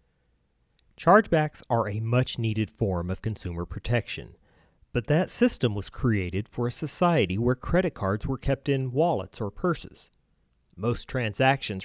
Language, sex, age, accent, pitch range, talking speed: English, male, 40-59, American, 100-135 Hz, 135 wpm